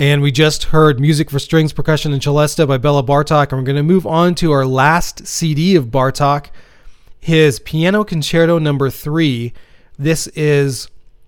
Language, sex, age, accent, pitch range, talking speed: English, male, 30-49, American, 135-160 Hz, 175 wpm